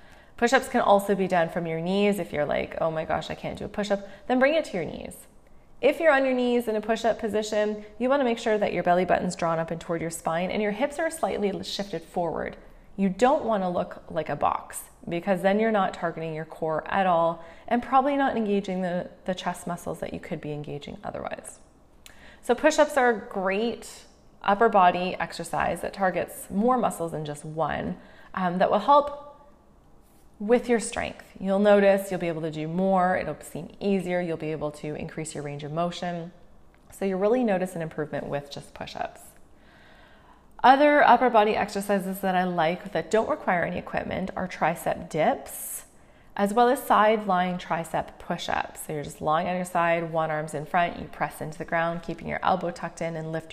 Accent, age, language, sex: American, 20-39, English, female